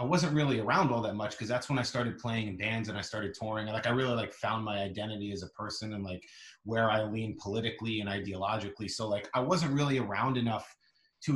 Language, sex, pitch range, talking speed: English, male, 100-120 Hz, 245 wpm